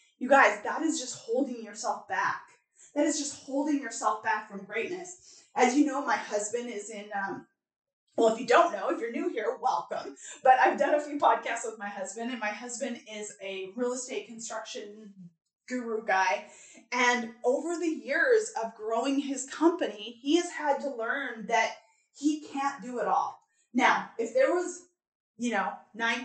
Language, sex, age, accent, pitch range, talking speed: English, female, 20-39, American, 215-290 Hz, 180 wpm